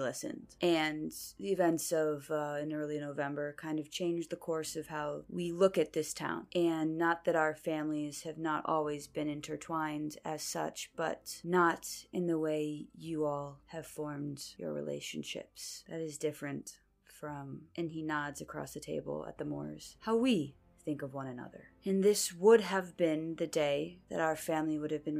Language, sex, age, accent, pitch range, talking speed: English, female, 20-39, American, 145-170 Hz, 180 wpm